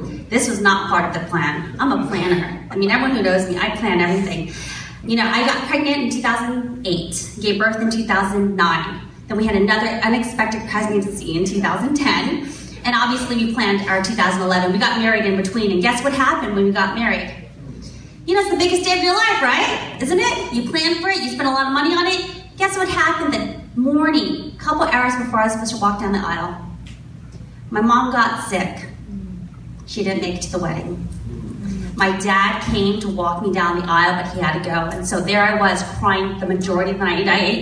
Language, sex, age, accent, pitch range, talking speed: English, female, 30-49, American, 195-265 Hz, 215 wpm